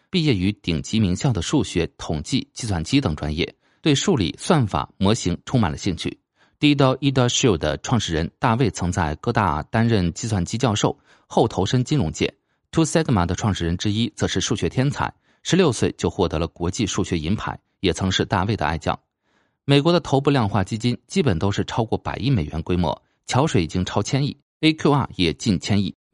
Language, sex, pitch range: Chinese, male, 90-135 Hz